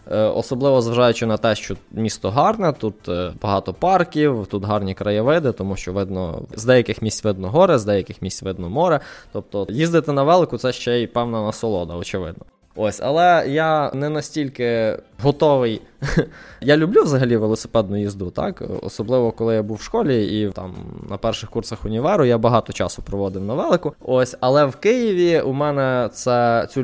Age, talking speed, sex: 20-39, 165 wpm, male